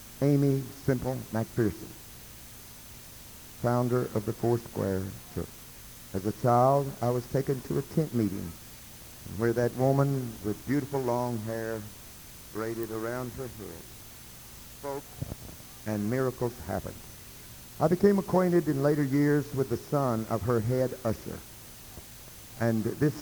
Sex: male